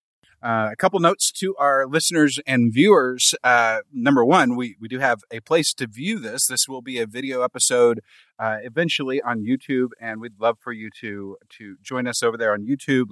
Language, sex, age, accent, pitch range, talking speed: English, male, 30-49, American, 115-140 Hz, 200 wpm